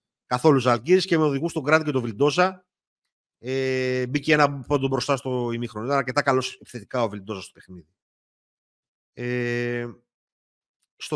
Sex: male